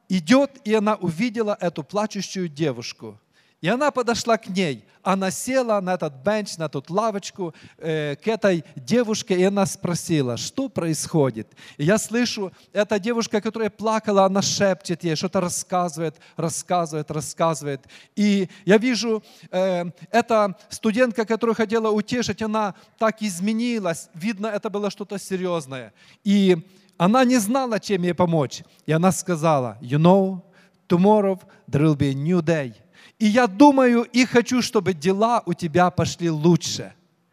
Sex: male